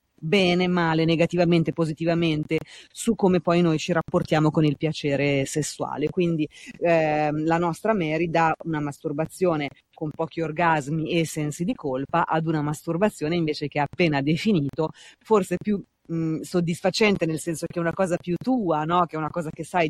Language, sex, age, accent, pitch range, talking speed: Italian, female, 30-49, native, 155-180 Hz, 170 wpm